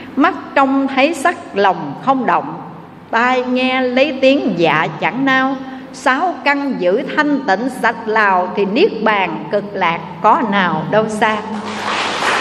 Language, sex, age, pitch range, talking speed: Vietnamese, female, 60-79, 185-260 Hz, 145 wpm